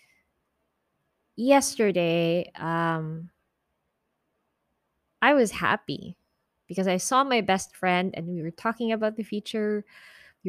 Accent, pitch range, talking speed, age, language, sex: Filipino, 185-230 Hz, 110 wpm, 20-39, English, female